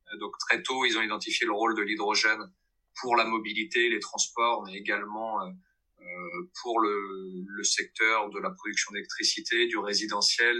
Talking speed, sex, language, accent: 155 wpm, male, French, French